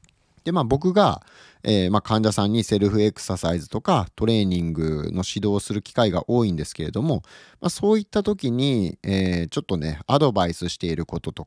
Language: Japanese